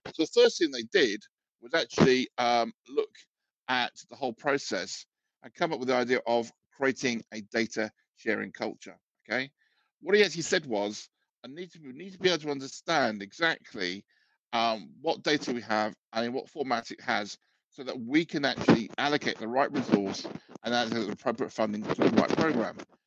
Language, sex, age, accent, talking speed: English, male, 50-69, British, 185 wpm